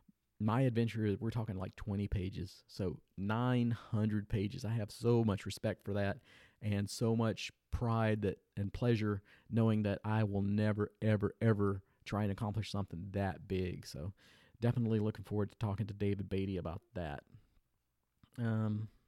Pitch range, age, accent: 105-120 Hz, 40-59, American